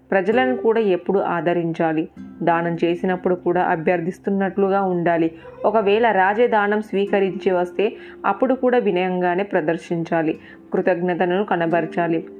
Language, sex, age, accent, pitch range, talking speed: Telugu, female, 20-39, native, 170-200 Hz, 95 wpm